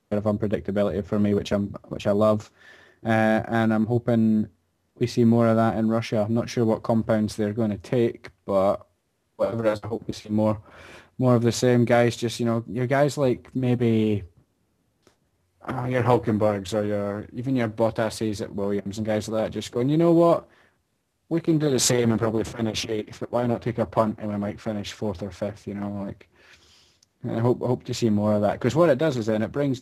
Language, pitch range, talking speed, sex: English, 105-120 Hz, 220 wpm, male